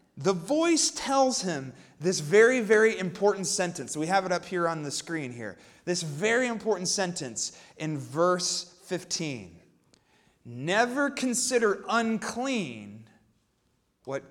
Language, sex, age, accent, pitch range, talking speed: English, male, 30-49, American, 170-245 Hz, 120 wpm